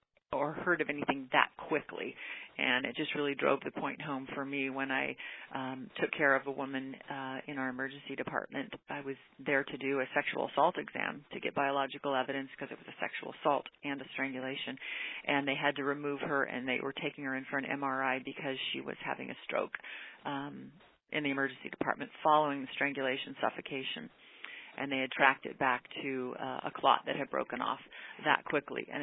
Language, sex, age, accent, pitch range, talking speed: English, female, 40-59, American, 135-155 Hz, 205 wpm